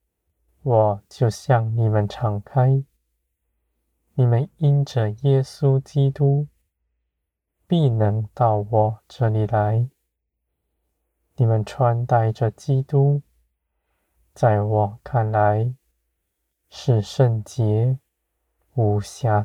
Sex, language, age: male, Chinese, 20-39